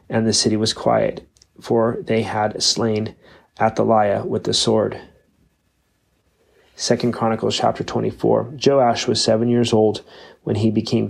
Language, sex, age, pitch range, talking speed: English, male, 30-49, 110-115 Hz, 135 wpm